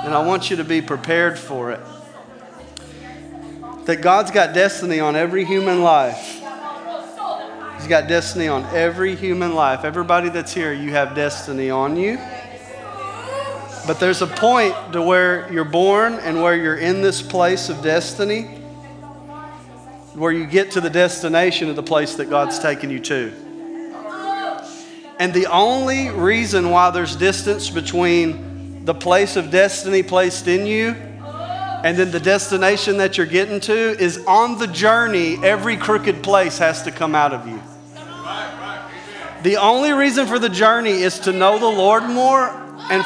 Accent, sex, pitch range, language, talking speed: American, male, 175-235 Hz, English, 155 wpm